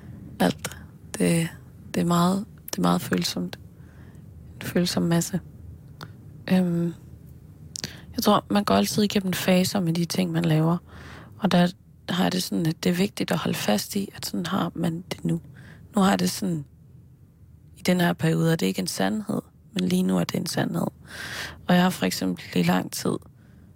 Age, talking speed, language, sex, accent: 20-39, 180 wpm, Danish, female, native